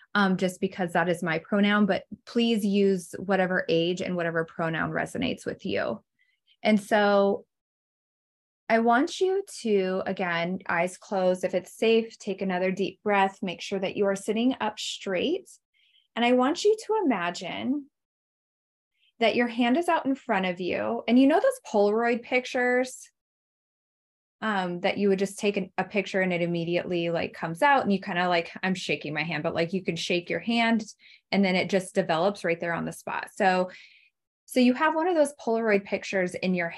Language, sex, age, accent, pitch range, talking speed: English, female, 20-39, American, 185-240 Hz, 190 wpm